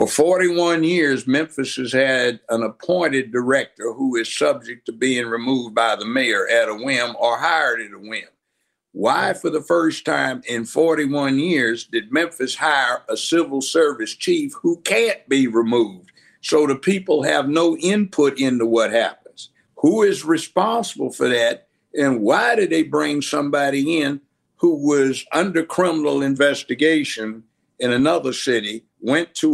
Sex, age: male, 60-79